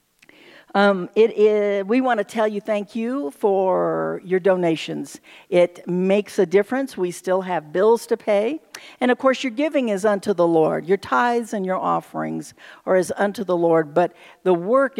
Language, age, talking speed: English, 60-79, 170 wpm